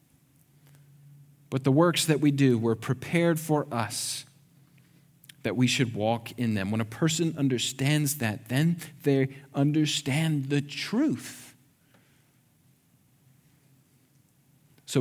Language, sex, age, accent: English, male, 40-59, American